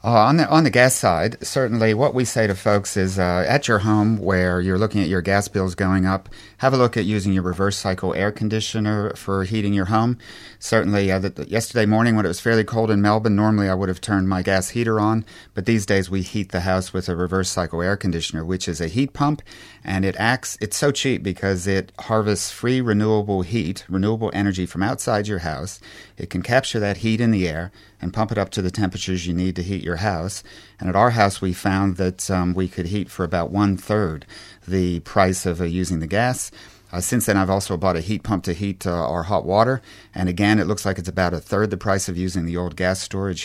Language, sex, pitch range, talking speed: English, male, 90-110 Hz, 235 wpm